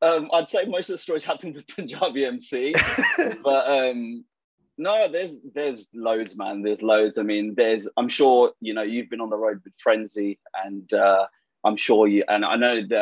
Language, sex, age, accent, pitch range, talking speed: English, male, 20-39, British, 100-120 Hz, 200 wpm